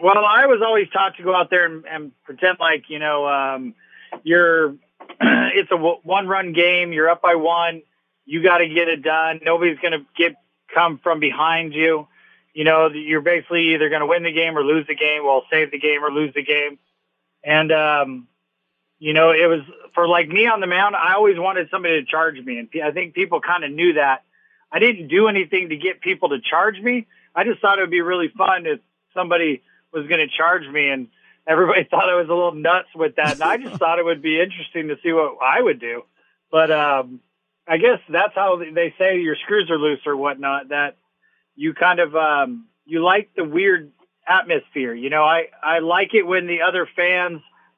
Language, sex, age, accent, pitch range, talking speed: English, male, 30-49, American, 155-185 Hz, 215 wpm